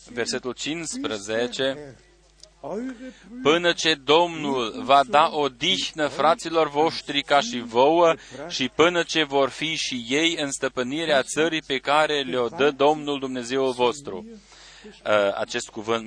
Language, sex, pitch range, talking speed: Romanian, male, 125-165 Hz, 120 wpm